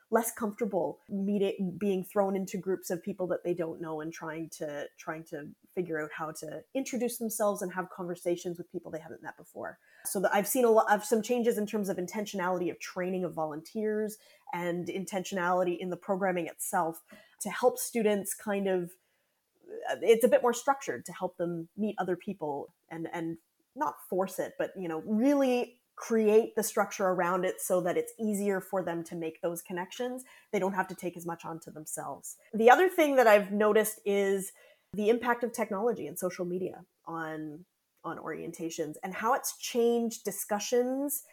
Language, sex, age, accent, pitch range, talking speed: English, female, 20-39, American, 180-225 Hz, 185 wpm